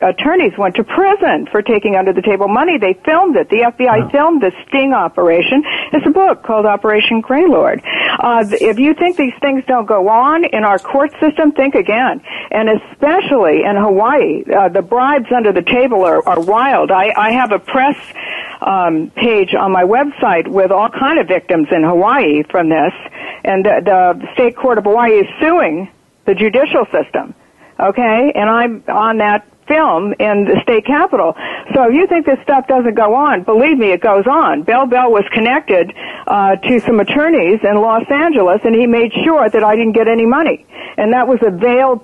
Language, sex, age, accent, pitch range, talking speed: English, female, 60-79, American, 205-280 Hz, 190 wpm